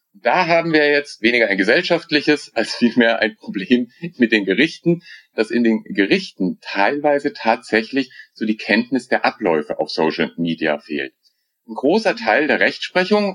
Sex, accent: male, German